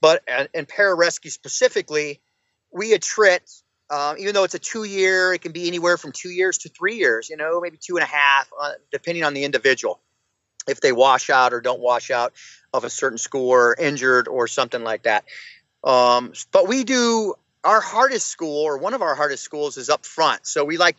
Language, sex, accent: English, male, American